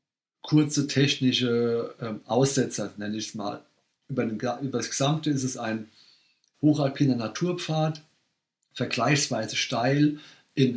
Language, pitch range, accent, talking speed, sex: German, 110-135 Hz, German, 105 wpm, male